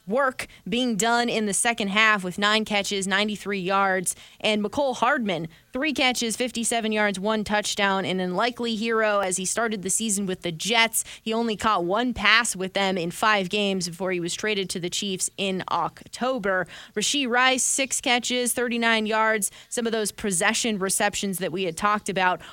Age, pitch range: 20-39, 195-235 Hz